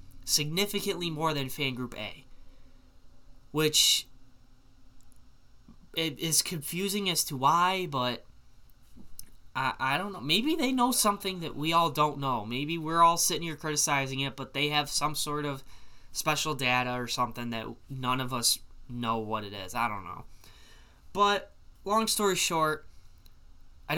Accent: American